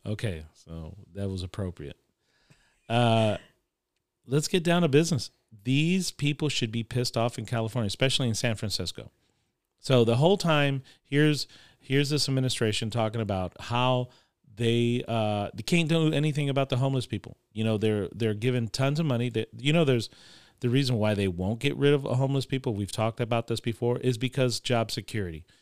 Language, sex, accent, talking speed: English, male, American, 175 wpm